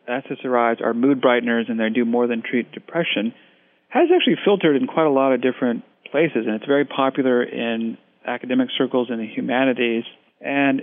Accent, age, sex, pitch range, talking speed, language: American, 40-59, male, 120-140 Hz, 175 wpm, English